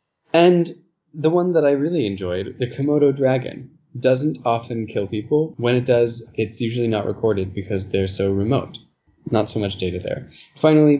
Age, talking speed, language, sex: 20-39, 170 wpm, English, male